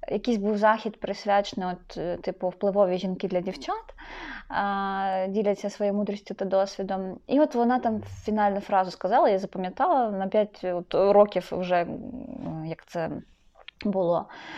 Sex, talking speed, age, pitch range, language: female, 130 wpm, 20-39, 190-235 Hz, Ukrainian